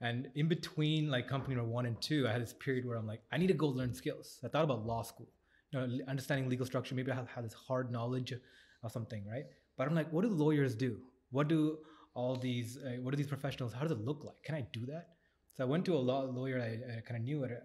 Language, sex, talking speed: English, male, 270 wpm